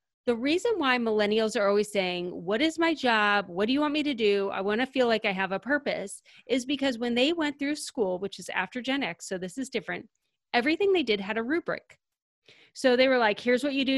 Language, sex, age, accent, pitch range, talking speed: English, female, 30-49, American, 210-280 Hz, 245 wpm